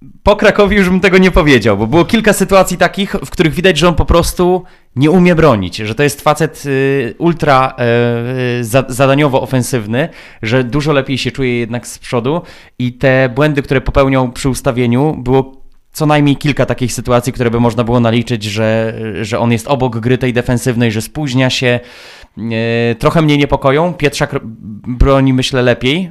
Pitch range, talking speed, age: 115-145 Hz, 170 wpm, 20-39